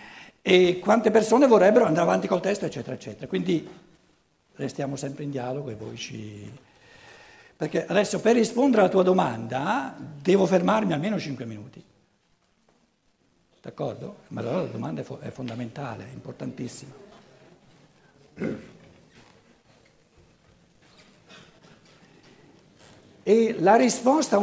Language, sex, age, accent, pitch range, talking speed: Italian, male, 60-79, native, 145-220 Hz, 105 wpm